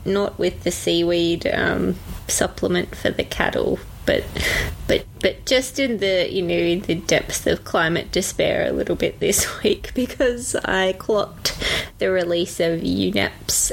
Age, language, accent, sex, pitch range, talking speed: 20-39, English, Australian, female, 180-215 Hz, 155 wpm